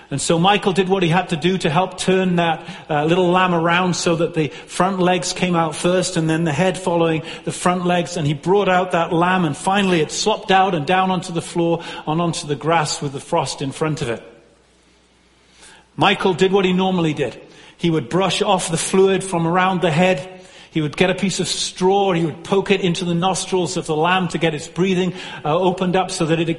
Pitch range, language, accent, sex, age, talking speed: 160-185 Hz, English, British, male, 40-59, 230 wpm